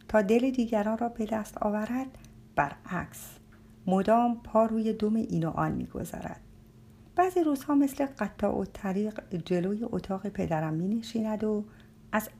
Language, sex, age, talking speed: Persian, female, 50-69, 125 wpm